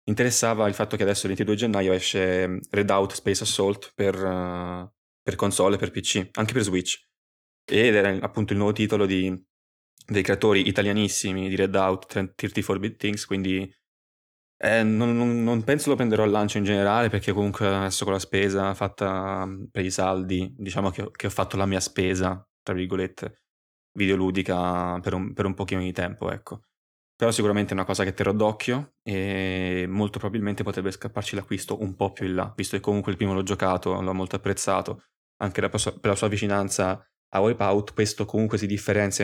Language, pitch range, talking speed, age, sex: Italian, 95-105 Hz, 180 wpm, 20-39, male